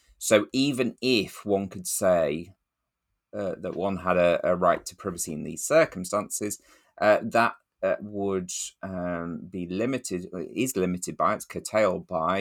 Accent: British